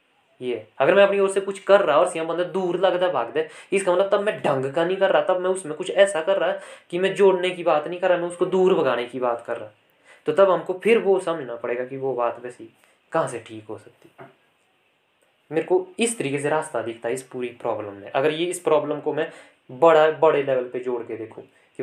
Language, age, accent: Hindi, 20-39, native